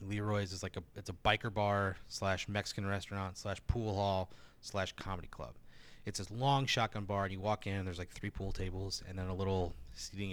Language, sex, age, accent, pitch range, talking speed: English, male, 30-49, American, 95-115 Hz, 210 wpm